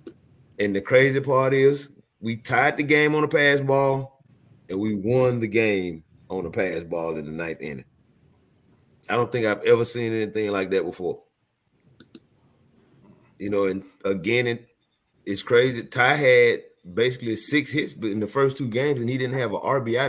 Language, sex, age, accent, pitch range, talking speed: English, male, 30-49, American, 105-130 Hz, 175 wpm